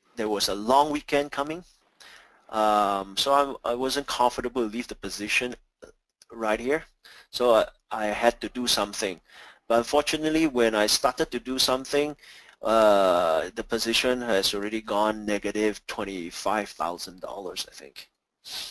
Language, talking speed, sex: English, 135 wpm, male